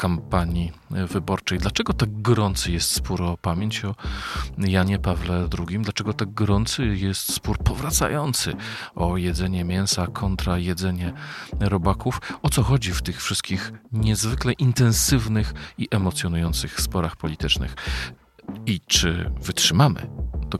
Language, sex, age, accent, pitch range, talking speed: Polish, male, 40-59, native, 85-110 Hz, 120 wpm